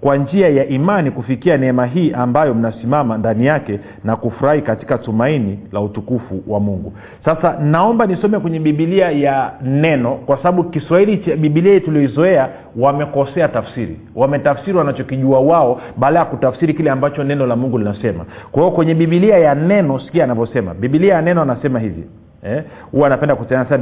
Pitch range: 130-190 Hz